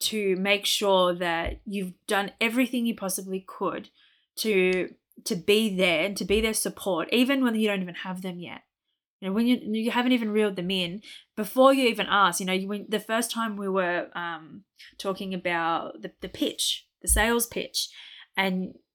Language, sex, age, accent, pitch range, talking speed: English, female, 20-39, Australian, 185-215 Hz, 190 wpm